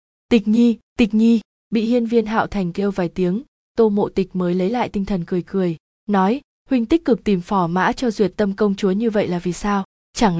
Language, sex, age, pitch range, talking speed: Vietnamese, female, 20-39, 185-225 Hz, 230 wpm